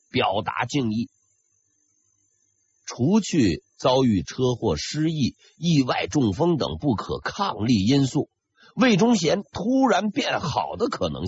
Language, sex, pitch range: Chinese, male, 105-170 Hz